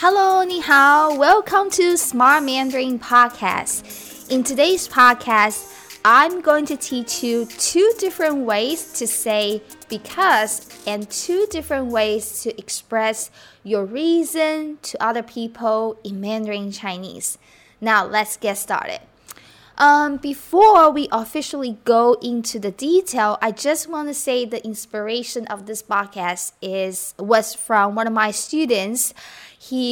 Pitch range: 210-280 Hz